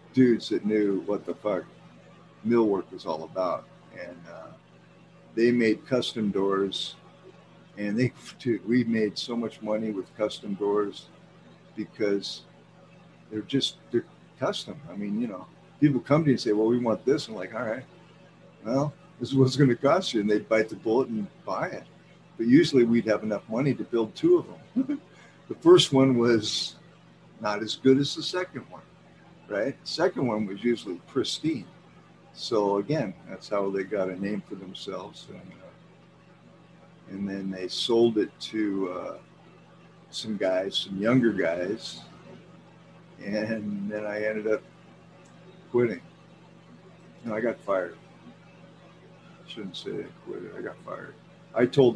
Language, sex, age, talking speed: English, male, 60-79, 160 wpm